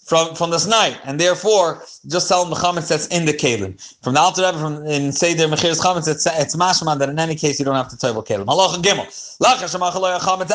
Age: 30-49